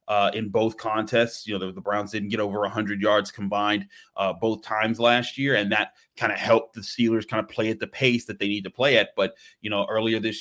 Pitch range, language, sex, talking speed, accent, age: 100-115 Hz, English, male, 250 wpm, American, 30-49